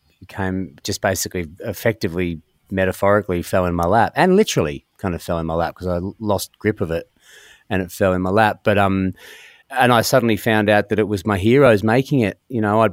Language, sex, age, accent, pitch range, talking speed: English, male, 30-49, Australian, 90-110 Hz, 220 wpm